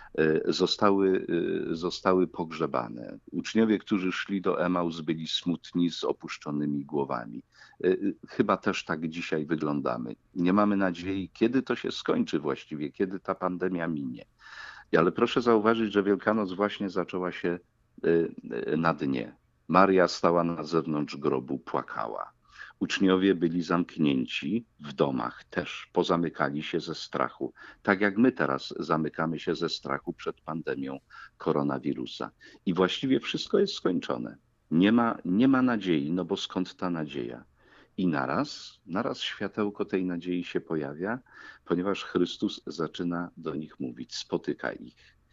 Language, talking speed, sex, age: Polish, 130 wpm, male, 50-69